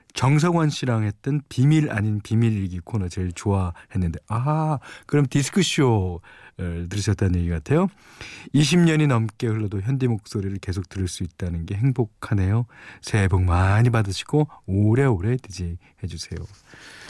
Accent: native